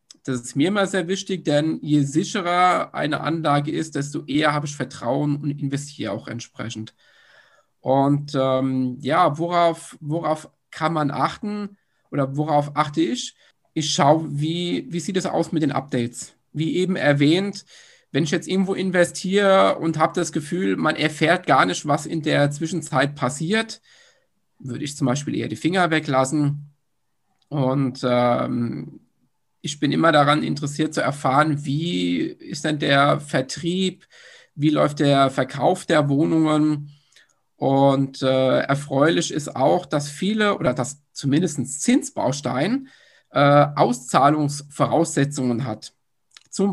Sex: male